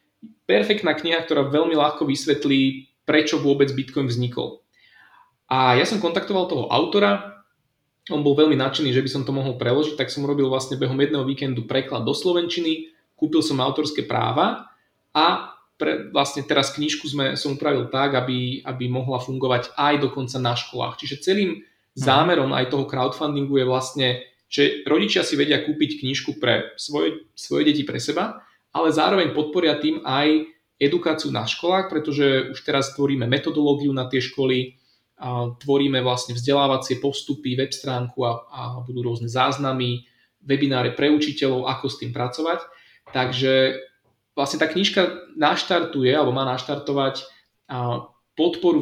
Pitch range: 130-150 Hz